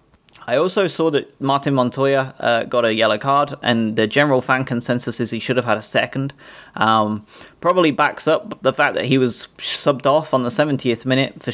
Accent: British